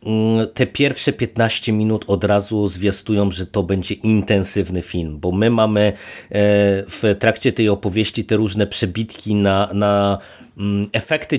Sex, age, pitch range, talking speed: male, 30-49, 100-115 Hz, 125 wpm